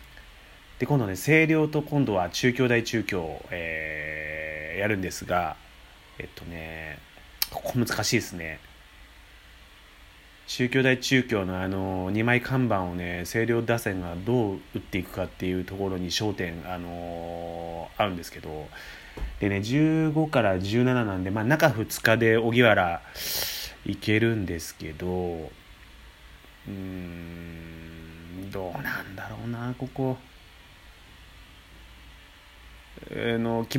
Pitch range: 80-120 Hz